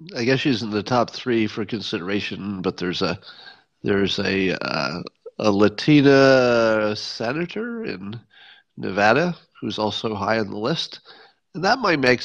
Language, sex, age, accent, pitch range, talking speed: English, male, 40-59, American, 105-150 Hz, 145 wpm